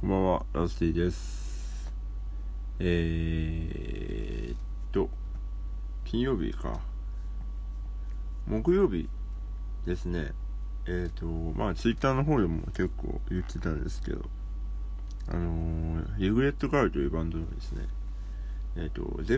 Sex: male